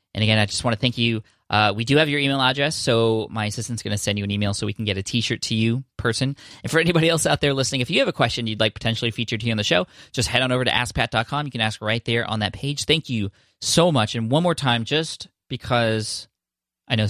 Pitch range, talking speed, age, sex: 100-125 Hz, 270 wpm, 20-39, male